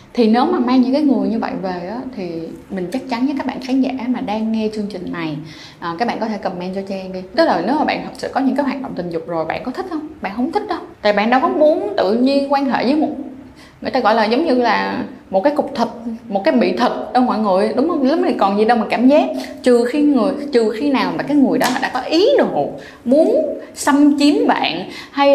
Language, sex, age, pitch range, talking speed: Vietnamese, female, 10-29, 205-280 Hz, 270 wpm